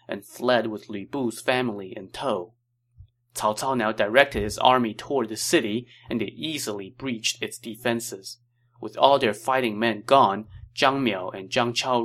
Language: English